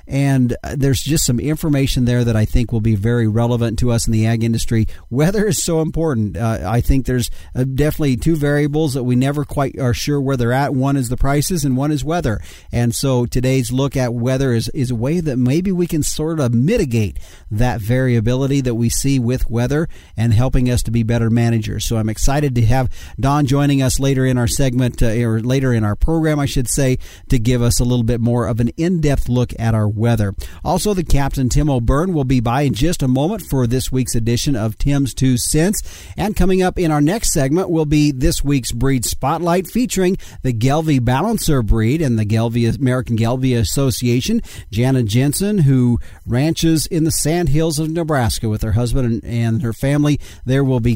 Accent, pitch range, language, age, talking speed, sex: American, 115-145 Hz, English, 50-69, 210 wpm, male